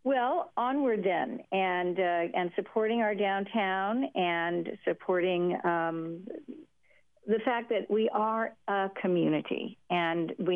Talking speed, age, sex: 120 wpm, 50-69, female